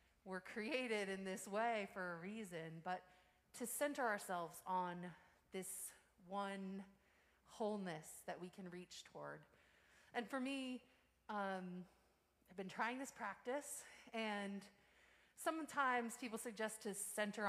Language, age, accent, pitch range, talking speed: English, 30-49, American, 180-240 Hz, 125 wpm